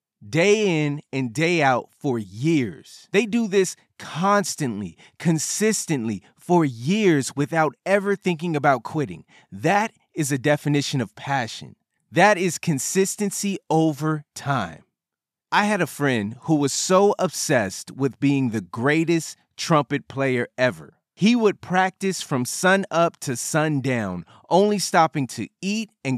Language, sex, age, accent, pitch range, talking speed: English, male, 30-49, American, 135-185 Hz, 135 wpm